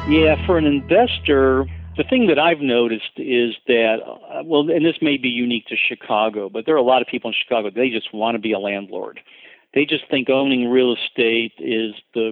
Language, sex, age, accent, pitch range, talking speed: English, male, 50-69, American, 110-140 Hz, 210 wpm